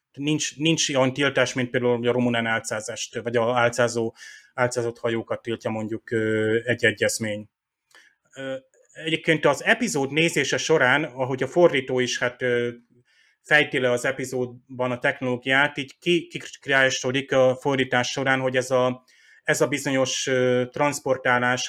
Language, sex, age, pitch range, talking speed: Hungarian, male, 30-49, 125-140 Hz, 125 wpm